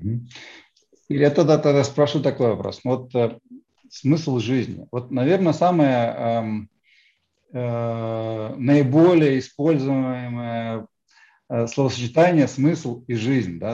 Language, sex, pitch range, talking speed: Russian, male, 120-155 Hz, 100 wpm